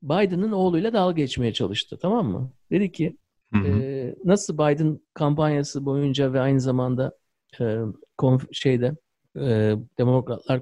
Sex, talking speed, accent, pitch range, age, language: male, 100 wpm, native, 125-185 Hz, 50-69, Turkish